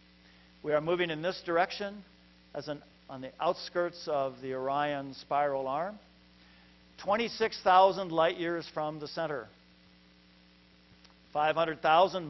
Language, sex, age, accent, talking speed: English, male, 50-69, American, 110 wpm